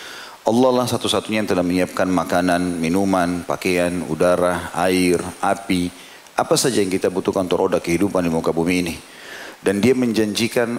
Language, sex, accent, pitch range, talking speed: Indonesian, male, native, 90-110 Hz, 150 wpm